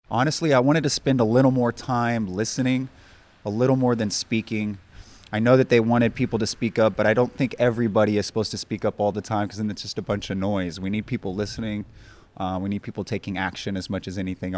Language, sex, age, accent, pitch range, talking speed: English, male, 20-39, American, 105-125 Hz, 245 wpm